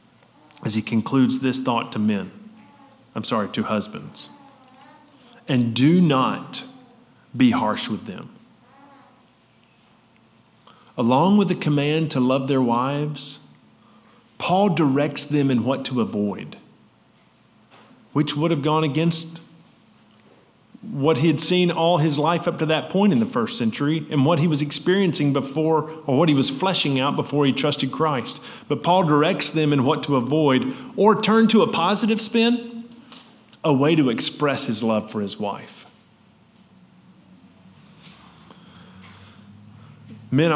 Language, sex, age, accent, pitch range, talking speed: English, male, 40-59, American, 130-190 Hz, 140 wpm